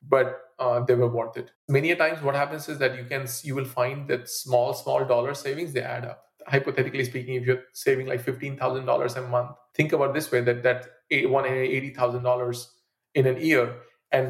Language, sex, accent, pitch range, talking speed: English, male, Indian, 120-130 Hz, 200 wpm